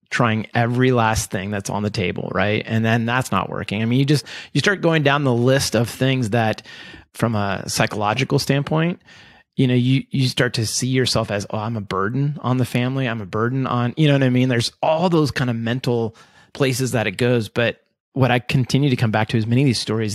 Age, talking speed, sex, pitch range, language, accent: 30-49, 235 wpm, male, 115-140 Hz, English, American